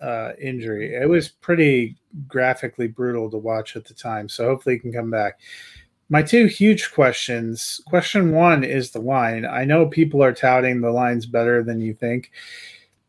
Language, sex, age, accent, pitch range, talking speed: English, male, 30-49, American, 115-145 Hz, 175 wpm